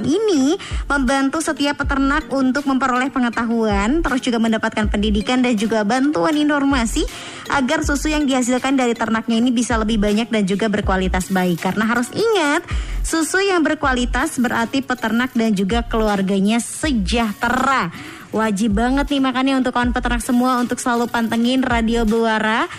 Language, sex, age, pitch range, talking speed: Indonesian, male, 20-39, 230-280 Hz, 140 wpm